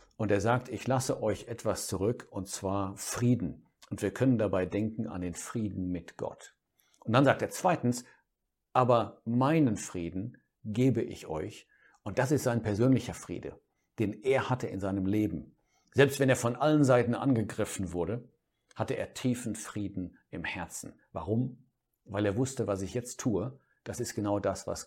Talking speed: 170 wpm